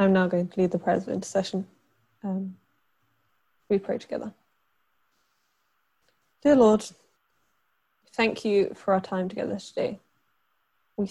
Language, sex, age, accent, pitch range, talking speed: English, female, 10-29, British, 185-210 Hz, 130 wpm